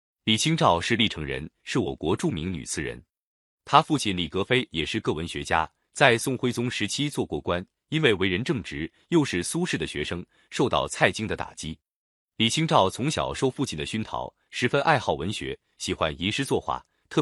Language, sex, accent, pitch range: Chinese, male, native, 90-140 Hz